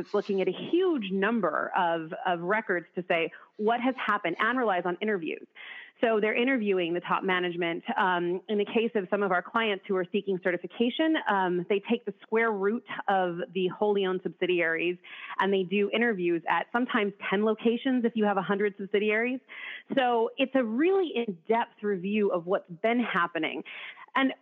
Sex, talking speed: female, 175 wpm